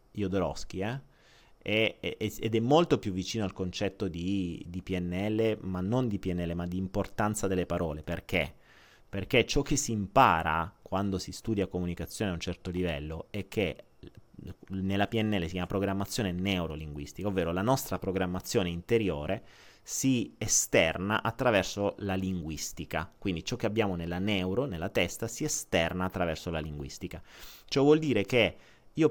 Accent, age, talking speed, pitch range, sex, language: native, 30-49, 155 wpm, 85-110 Hz, male, Italian